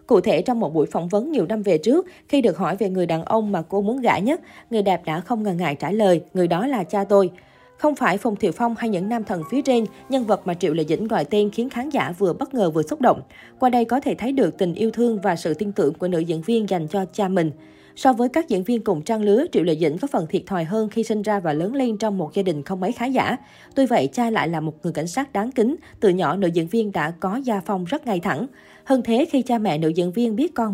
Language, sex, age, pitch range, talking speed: Vietnamese, female, 20-39, 180-235 Hz, 290 wpm